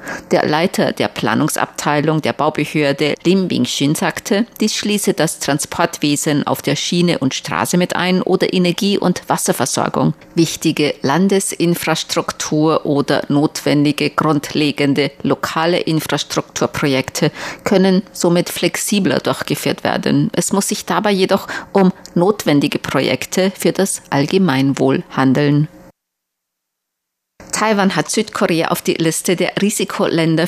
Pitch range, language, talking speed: 155-185 Hz, German, 110 wpm